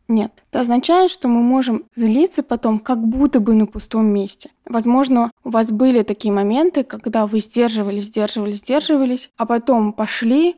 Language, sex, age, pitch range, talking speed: Russian, female, 20-39, 215-255 Hz, 160 wpm